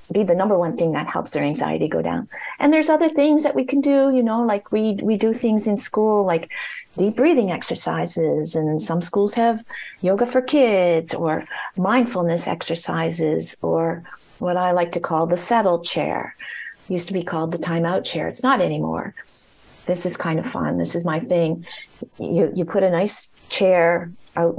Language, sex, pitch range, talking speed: English, female, 165-215 Hz, 190 wpm